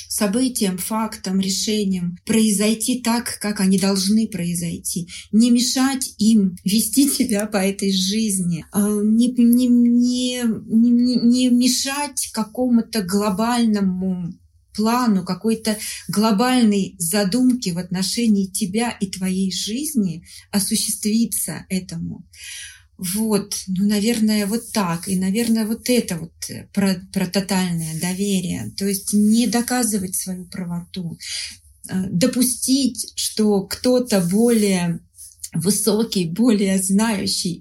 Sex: female